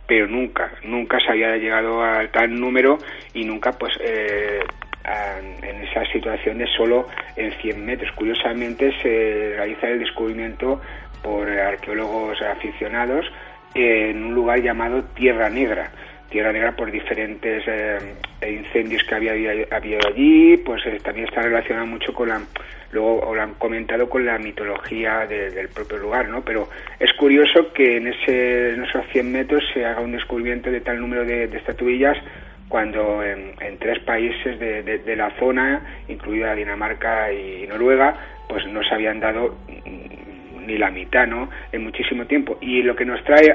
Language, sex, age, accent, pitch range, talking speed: Spanish, male, 30-49, Spanish, 110-125 Hz, 160 wpm